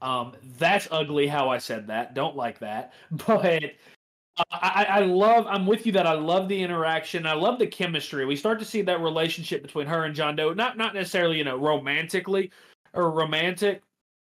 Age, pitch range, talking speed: 30-49, 155-195 Hz, 195 wpm